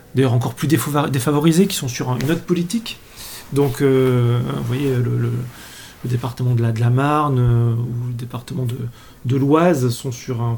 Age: 30-49